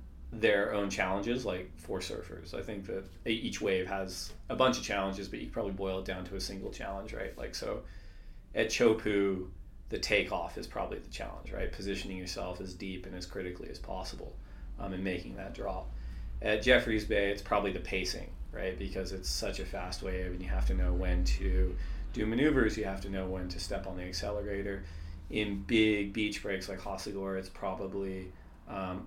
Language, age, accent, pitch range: English, 30-49, American, 90-110 Hz